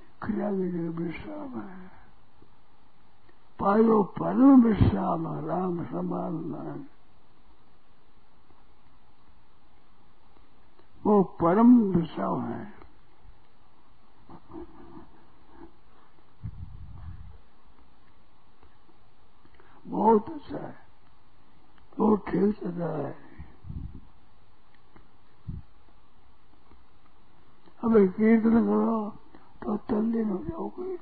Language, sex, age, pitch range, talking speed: Hindi, male, 60-79, 165-215 Hz, 55 wpm